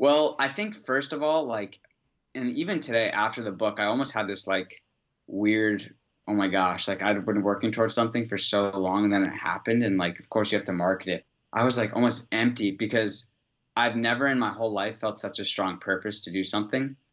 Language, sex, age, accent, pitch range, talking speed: English, male, 20-39, American, 100-120 Hz, 225 wpm